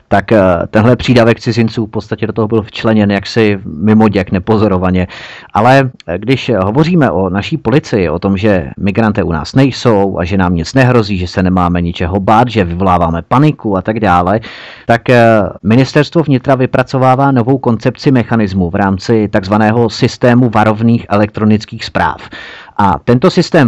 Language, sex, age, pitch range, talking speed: Czech, male, 30-49, 100-120 Hz, 150 wpm